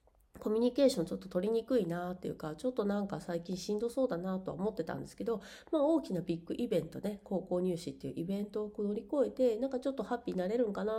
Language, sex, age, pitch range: Japanese, female, 40-59, 170-255 Hz